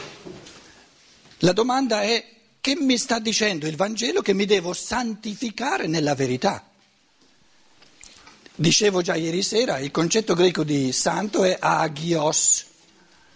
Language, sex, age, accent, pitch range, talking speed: Italian, male, 60-79, native, 155-225 Hz, 115 wpm